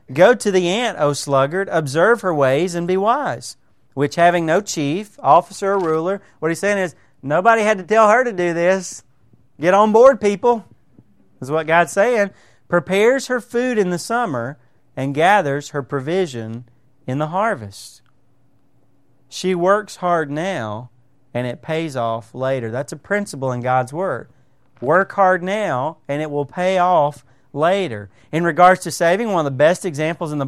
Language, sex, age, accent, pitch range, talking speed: English, male, 40-59, American, 140-210 Hz, 170 wpm